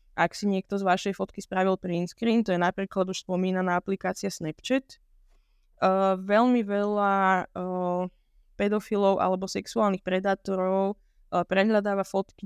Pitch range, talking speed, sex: 185-205 Hz, 125 wpm, female